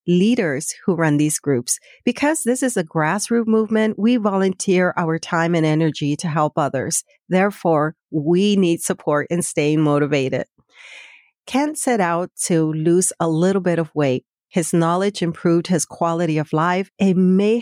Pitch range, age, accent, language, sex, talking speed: 155-205 Hz, 50-69, American, English, female, 155 wpm